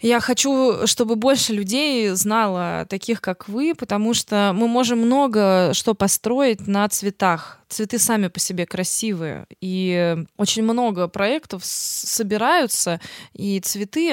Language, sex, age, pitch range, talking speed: Russian, female, 20-39, 180-225 Hz, 125 wpm